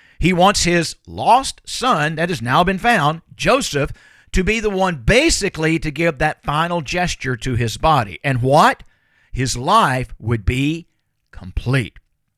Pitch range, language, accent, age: 140-200 Hz, English, American, 50-69